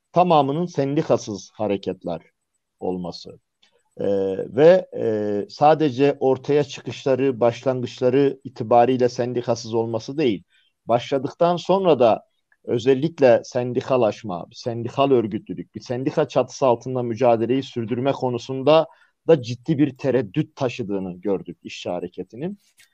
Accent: native